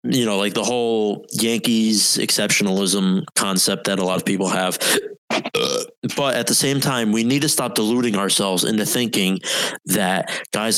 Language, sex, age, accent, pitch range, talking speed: English, male, 20-39, American, 95-120 Hz, 160 wpm